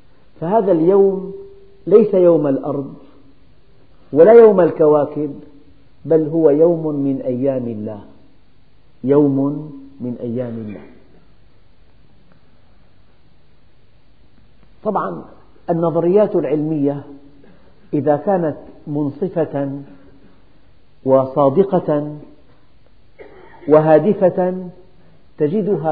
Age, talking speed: 50-69, 65 wpm